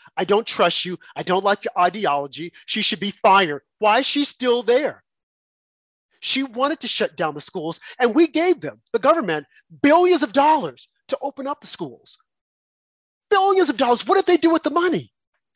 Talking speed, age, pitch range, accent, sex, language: 190 wpm, 40-59, 165-250 Hz, American, male, English